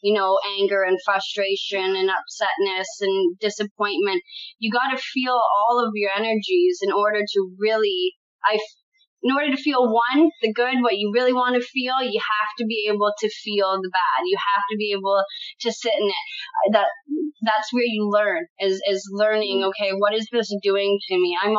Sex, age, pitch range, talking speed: female, 20-39, 195-240 Hz, 190 wpm